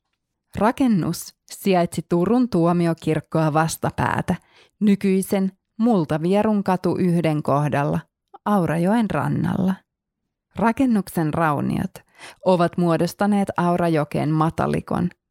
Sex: female